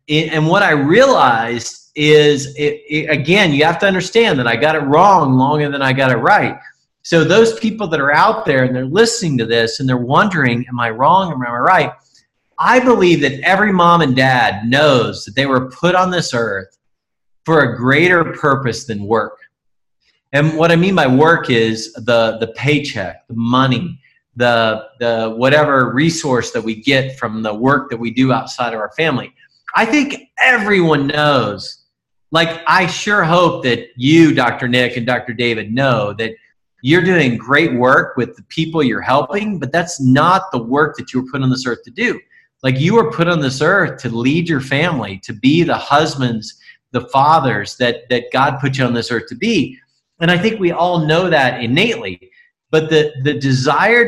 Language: English